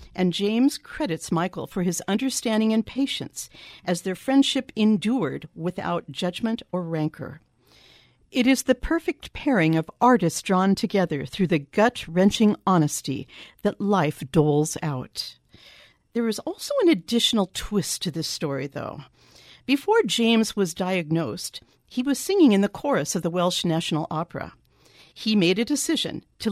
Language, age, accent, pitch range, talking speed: English, 50-69, American, 170-240 Hz, 145 wpm